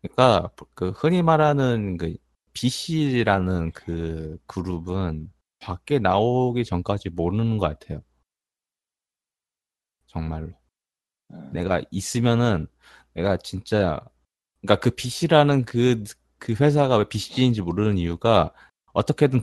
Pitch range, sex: 85-120 Hz, male